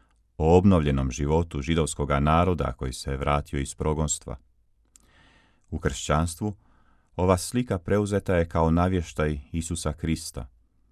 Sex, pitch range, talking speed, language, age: male, 70-85 Hz, 110 wpm, Croatian, 40-59